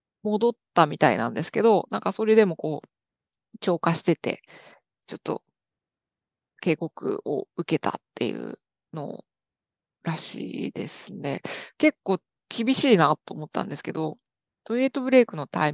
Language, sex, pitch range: Japanese, female, 160-225 Hz